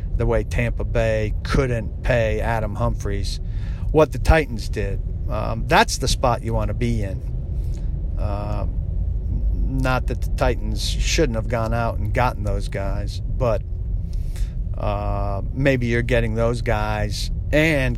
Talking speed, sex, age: 140 wpm, male, 50-69